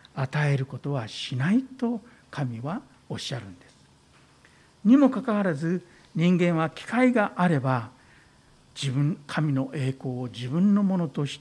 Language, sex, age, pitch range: Japanese, male, 60-79, 130-190 Hz